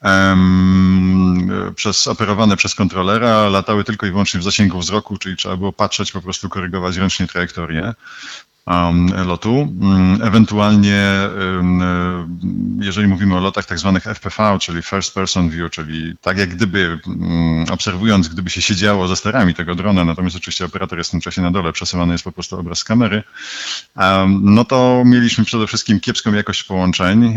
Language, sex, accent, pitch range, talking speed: Polish, male, native, 90-105 Hz, 150 wpm